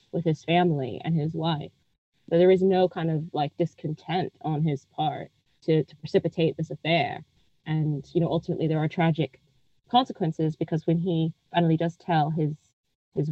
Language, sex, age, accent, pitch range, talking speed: English, female, 20-39, American, 155-180 Hz, 170 wpm